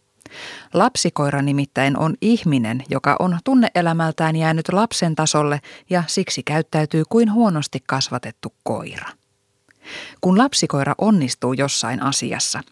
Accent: native